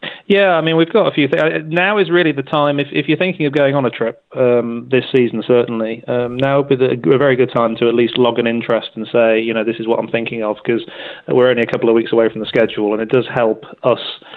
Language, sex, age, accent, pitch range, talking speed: English, male, 30-49, British, 110-120 Hz, 275 wpm